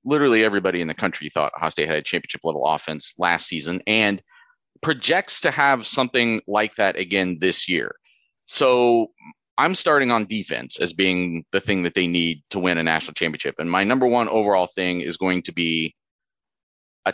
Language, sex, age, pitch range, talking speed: English, male, 30-49, 90-130 Hz, 180 wpm